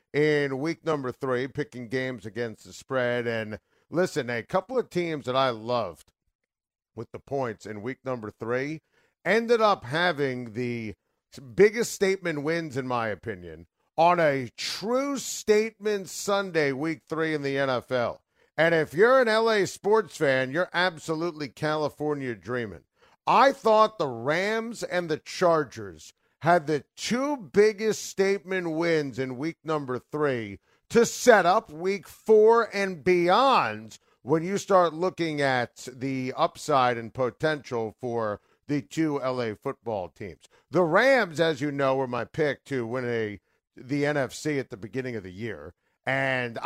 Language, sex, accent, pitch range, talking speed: English, male, American, 125-175 Hz, 145 wpm